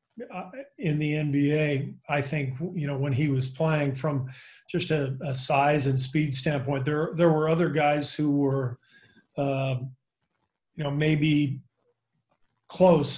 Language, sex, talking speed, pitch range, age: English, male, 140 wpm, 140-160 Hz, 40-59